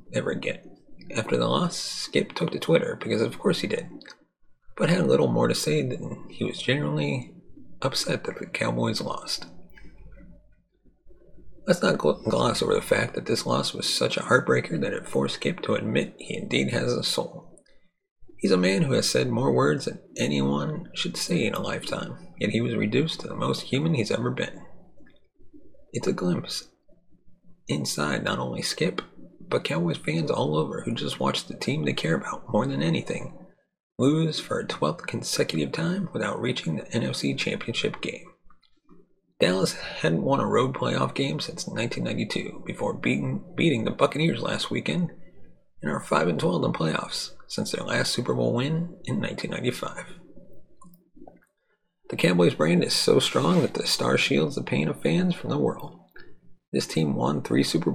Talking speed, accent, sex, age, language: 170 wpm, American, male, 30-49, English